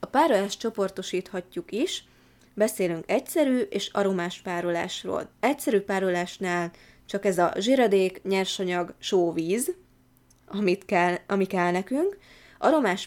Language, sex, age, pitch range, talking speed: Hungarian, female, 20-39, 175-205 Hz, 105 wpm